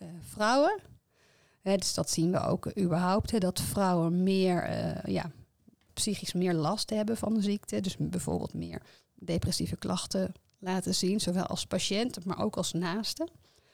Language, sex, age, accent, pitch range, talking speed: Dutch, female, 30-49, Dutch, 180-205 Hz, 155 wpm